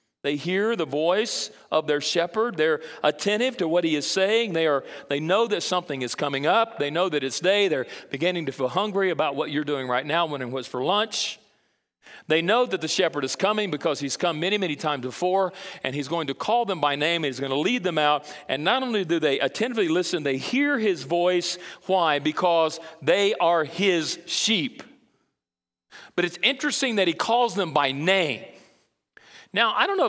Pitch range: 140-195 Hz